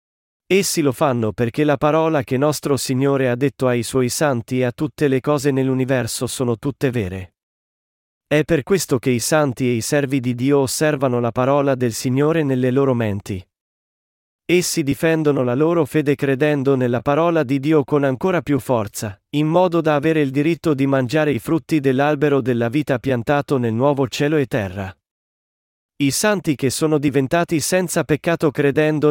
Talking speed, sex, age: 170 wpm, male, 40-59